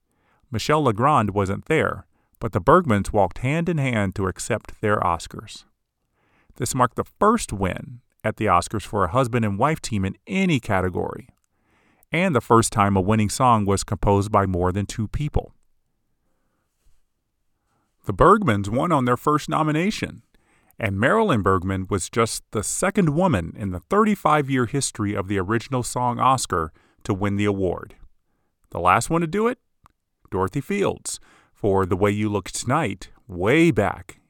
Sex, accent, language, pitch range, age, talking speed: male, American, English, 95-120 Hz, 40-59, 155 wpm